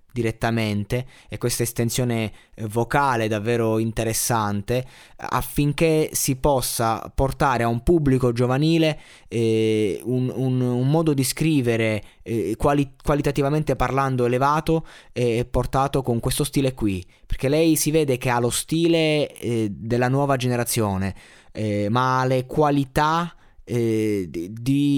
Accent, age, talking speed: native, 20-39, 115 wpm